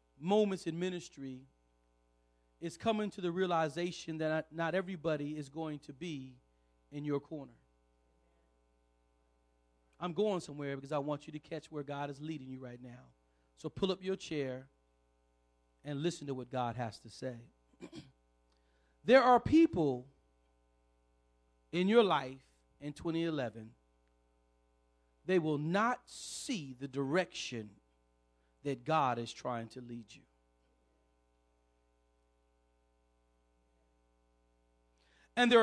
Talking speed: 120 wpm